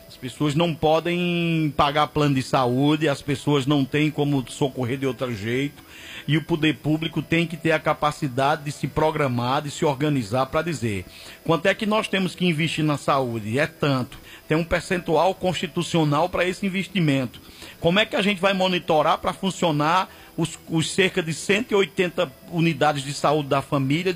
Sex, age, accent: male, 50-69, Brazilian